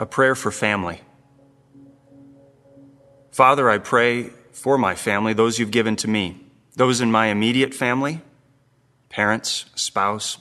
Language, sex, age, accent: English, male, 30-49, American